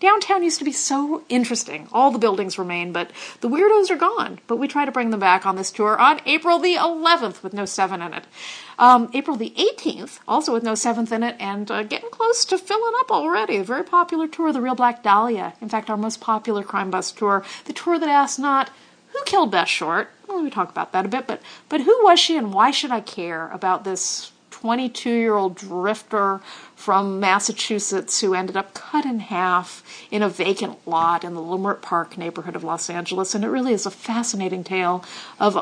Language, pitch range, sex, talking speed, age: English, 195-285 Hz, female, 210 wpm, 40-59